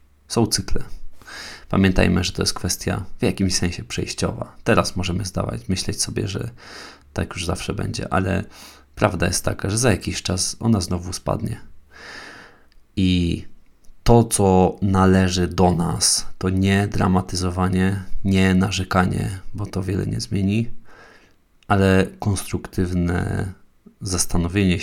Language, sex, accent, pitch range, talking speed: Polish, male, native, 90-100 Hz, 125 wpm